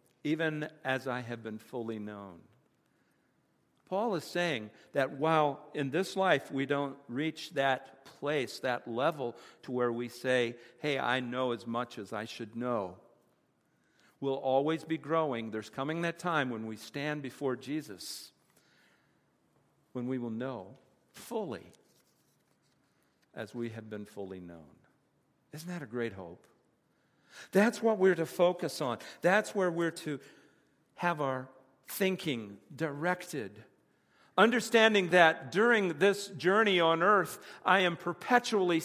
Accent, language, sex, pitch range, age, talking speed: American, English, male, 125-185 Hz, 50-69, 135 wpm